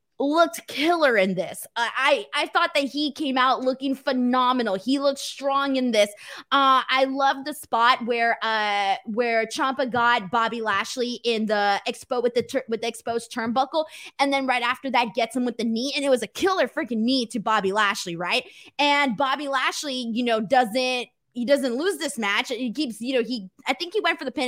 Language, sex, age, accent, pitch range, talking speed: English, female, 20-39, American, 225-280 Hz, 210 wpm